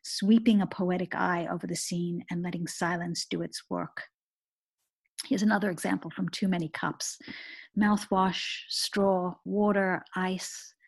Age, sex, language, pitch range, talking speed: 50-69, female, English, 180-210 Hz, 130 wpm